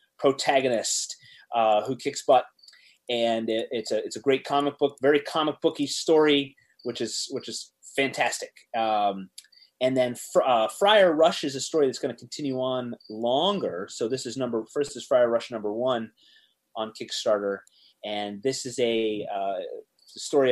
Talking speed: 165 wpm